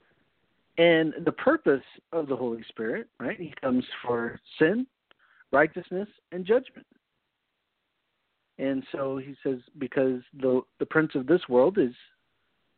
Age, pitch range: 50-69, 125-170 Hz